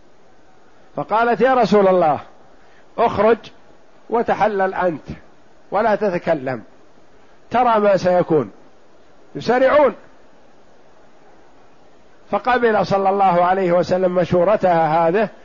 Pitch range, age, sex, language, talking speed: 175-220 Hz, 50-69, male, Arabic, 80 wpm